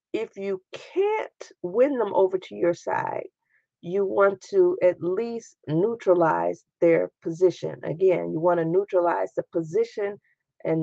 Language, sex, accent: English, female, American